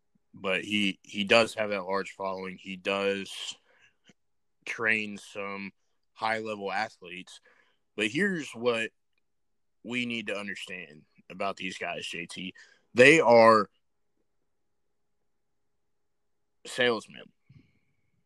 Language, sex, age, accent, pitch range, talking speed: English, male, 20-39, American, 100-115 Hz, 90 wpm